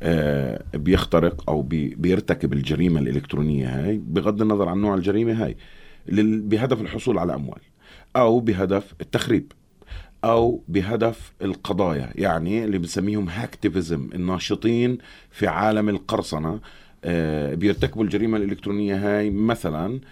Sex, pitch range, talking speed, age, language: male, 95-115 Hz, 115 wpm, 30-49, Arabic